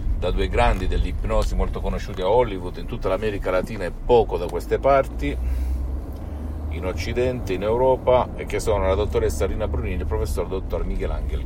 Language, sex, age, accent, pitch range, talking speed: Italian, male, 50-69, native, 80-110 Hz, 180 wpm